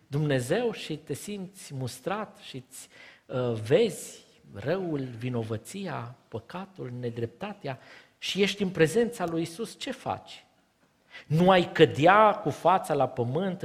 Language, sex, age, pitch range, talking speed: Romanian, male, 50-69, 150-200 Hz, 120 wpm